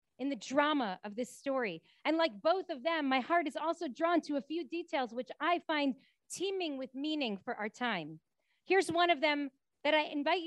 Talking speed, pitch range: 205 wpm, 255-335 Hz